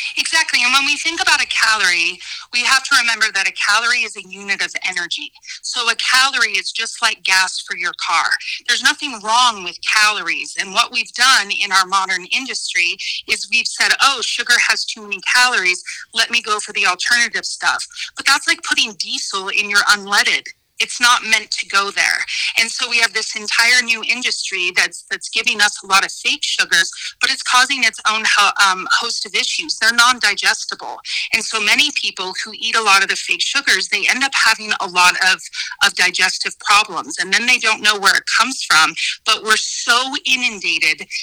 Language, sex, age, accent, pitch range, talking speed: English, female, 30-49, American, 195-250 Hz, 200 wpm